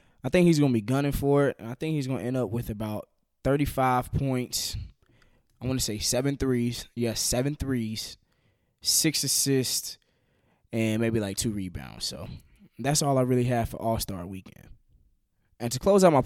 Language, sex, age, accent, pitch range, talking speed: English, male, 20-39, American, 115-140 Hz, 185 wpm